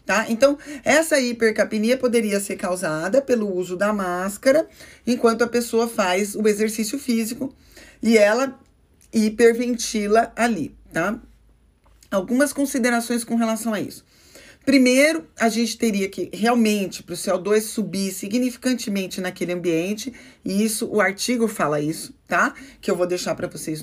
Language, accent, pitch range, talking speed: Portuguese, Brazilian, 195-245 Hz, 135 wpm